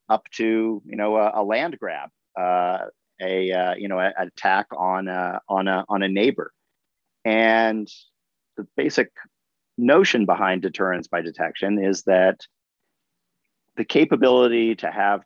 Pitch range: 90-110 Hz